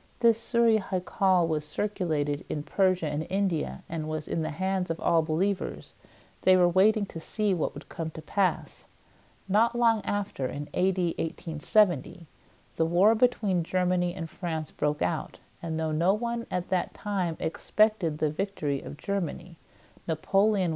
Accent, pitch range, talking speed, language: American, 155-200 Hz, 155 wpm, English